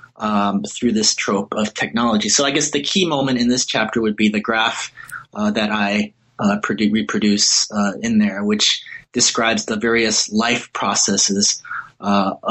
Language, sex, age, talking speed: English, male, 30-49, 170 wpm